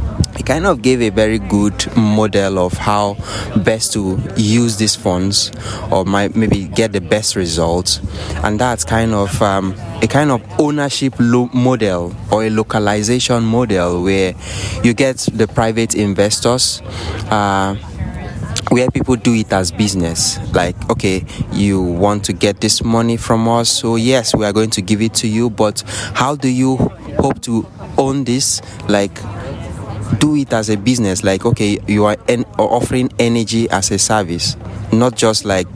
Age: 20-39